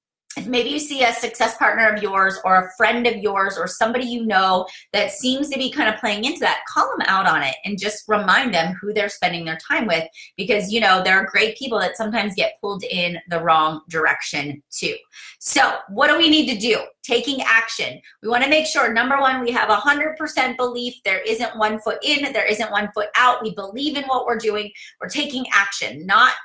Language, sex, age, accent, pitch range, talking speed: English, female, 30-49, American, 200-245 Hz, 220 wpm